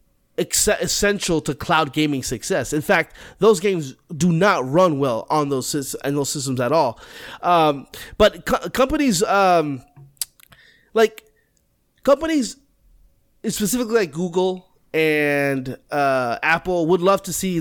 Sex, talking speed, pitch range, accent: male, 125 wpm, 155-210 Hz, American